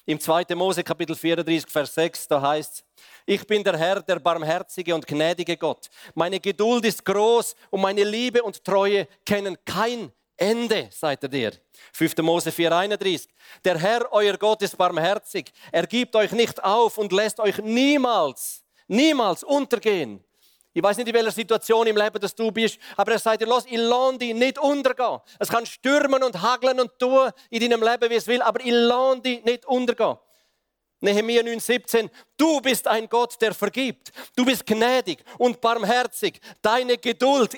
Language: German